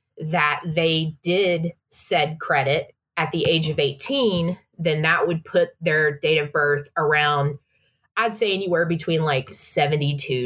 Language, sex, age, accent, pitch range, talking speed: English, female, 30-49, American, 150-195 Hz, 145 wpm